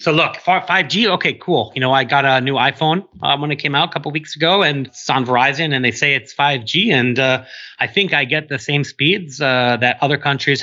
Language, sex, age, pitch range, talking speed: English, male, 30-49, 115-145 Hz, 250 wpm